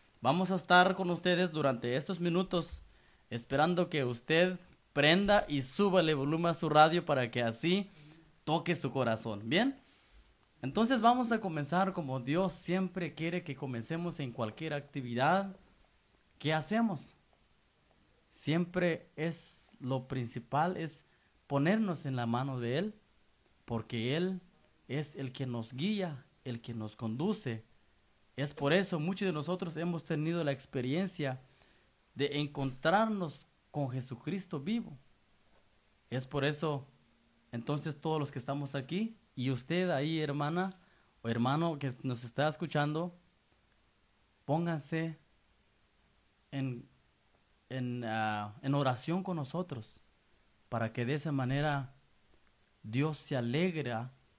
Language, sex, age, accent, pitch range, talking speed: English, male, 30-49, Mexican, 125-175 Hz, 125 wpm